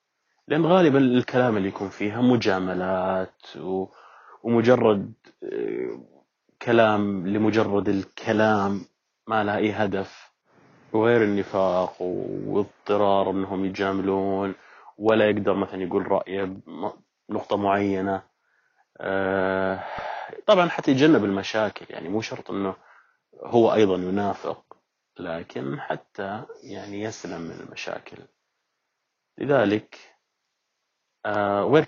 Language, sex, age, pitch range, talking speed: Arabic, male, 30-49, 95-110 Hz, 85 wpm